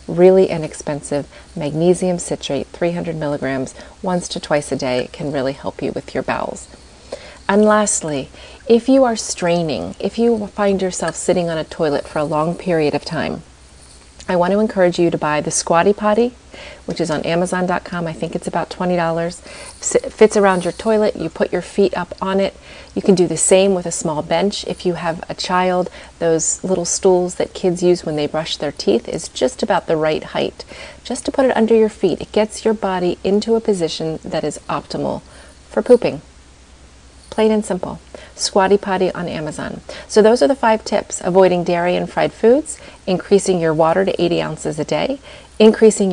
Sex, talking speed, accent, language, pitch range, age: female, 190 wpm, American, English, 160-210 Hz, 30-49